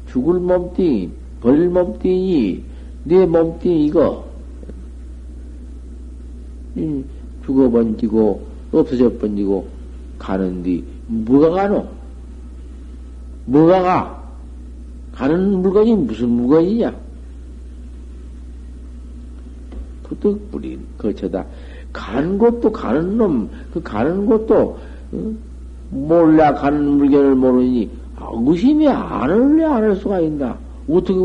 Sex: male